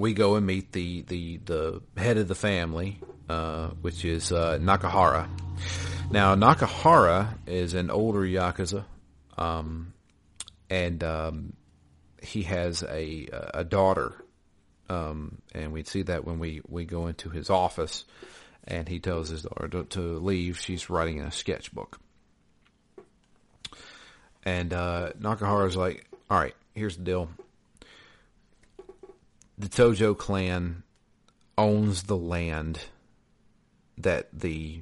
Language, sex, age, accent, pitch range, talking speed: English, male, 40-59, American, 80-100 Hz, 125 wpm